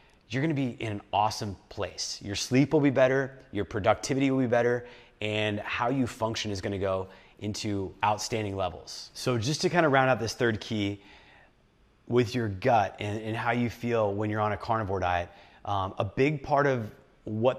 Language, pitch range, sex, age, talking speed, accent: English, 105-125 Hz, male, 30-49, 195 wpm, American